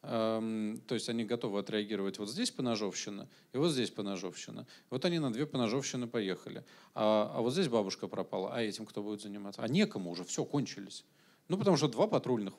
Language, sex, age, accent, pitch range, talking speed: Russian, male, 40-59, native, 110-140 Hz, 185 wpm